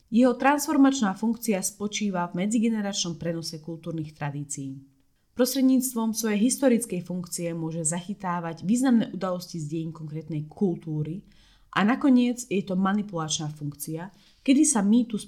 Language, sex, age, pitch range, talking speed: Slovak, female, 20-39, 160-215 Hz, 120 wpm